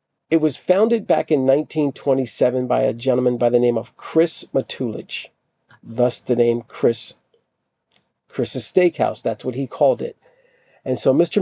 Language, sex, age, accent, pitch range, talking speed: English, male, 50-69, American, 125-155 Hz, 150 wpm